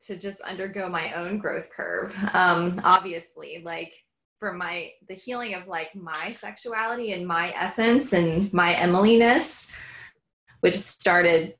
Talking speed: 135 wpm